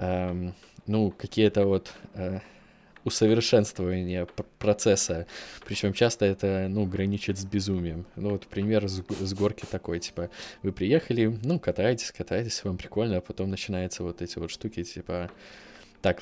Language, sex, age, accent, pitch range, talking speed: Russian, male, 20-39, native, 90-105 Hz, 140 wpm